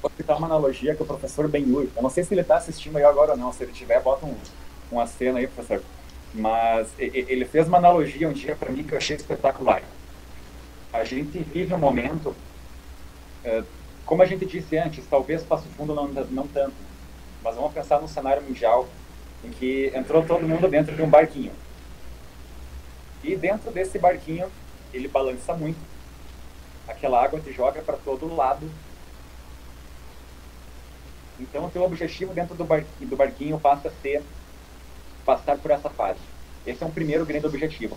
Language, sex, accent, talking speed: Portuguese, male, Brazilian, 175 wpm